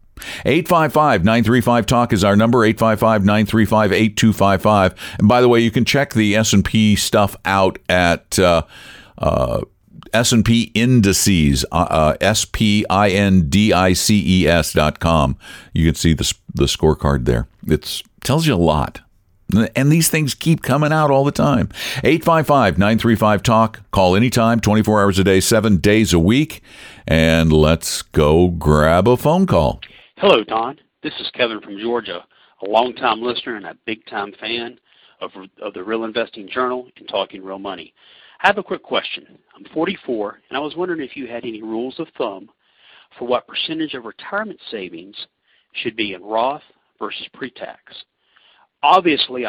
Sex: male